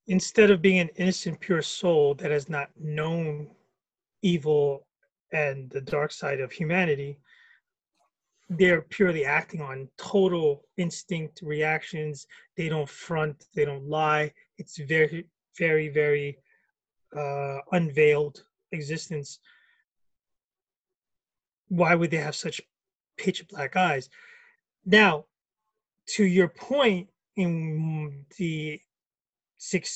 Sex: male